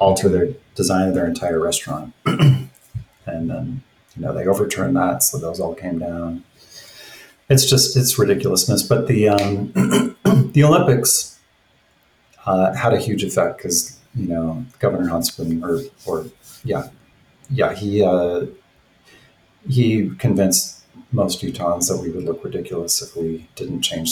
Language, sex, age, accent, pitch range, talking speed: English, male, 40-59, American, 95-130 Hz, 145 wpm